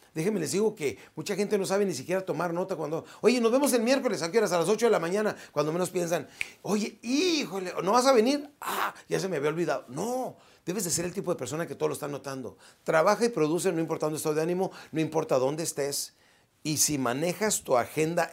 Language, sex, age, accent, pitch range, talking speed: Spanish, male, 40-59, Mexican, 135-210 Hz, 230 wpm